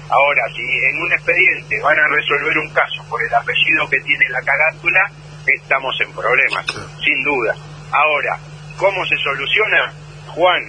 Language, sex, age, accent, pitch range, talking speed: Spanish, male, 40-59, Argentinian, 145-180 Hz, 150 wpm